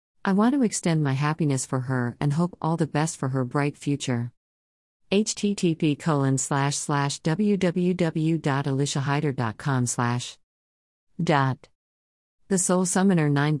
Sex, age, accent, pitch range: female, 50-69, American, 130-160 Hz